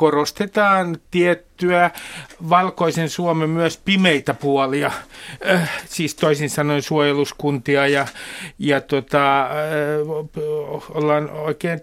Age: 50-69